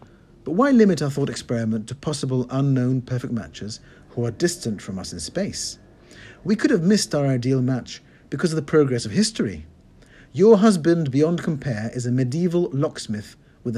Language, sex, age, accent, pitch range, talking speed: English, male, 50-69, British, 110-150 Hz, 175 wpm